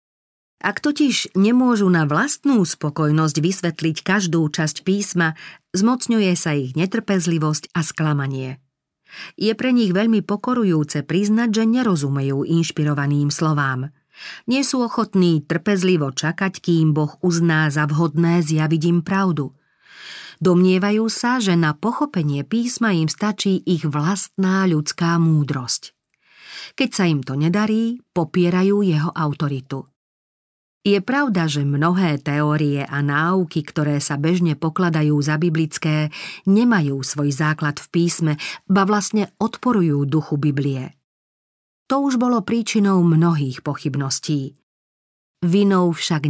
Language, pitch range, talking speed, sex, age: Slovak, 150-200 Hz, 115 wpm, female, 40-59